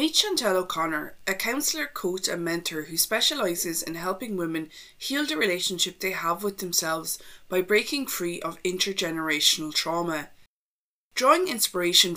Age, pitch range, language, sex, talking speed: 20-39, 170-220 Hz, English, female, 140 wpm